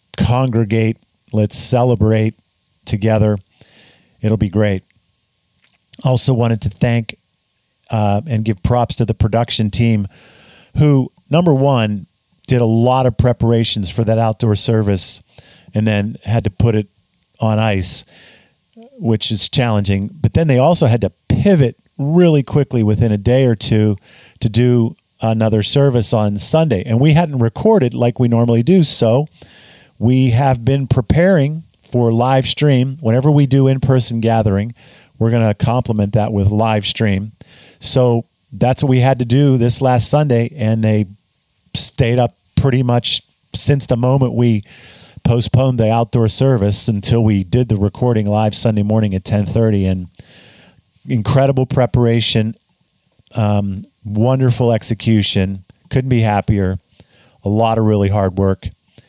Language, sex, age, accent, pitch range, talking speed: English, male, 50-69, American, 105-130 Hz, 140 wpm